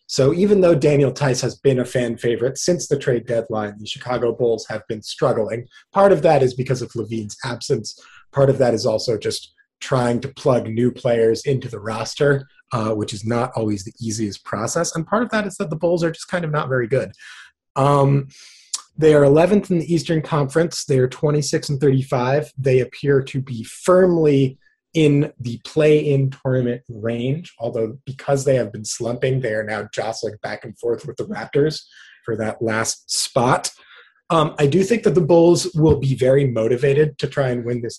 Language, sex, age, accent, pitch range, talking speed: English, male, 30-49, American, 115-150 Hz, 195 wpm